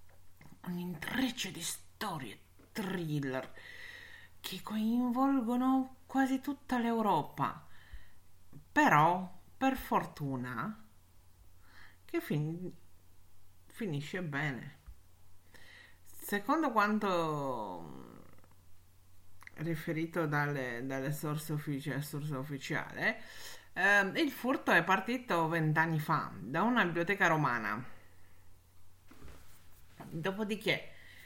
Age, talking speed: 50-69, 65 wpm